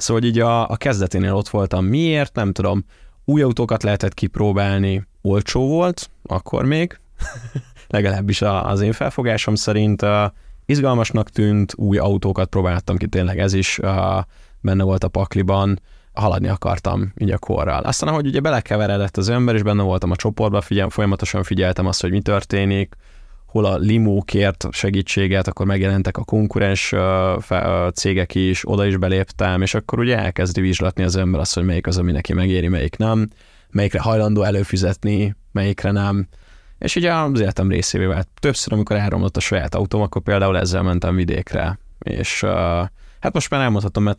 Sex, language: male, Hungarian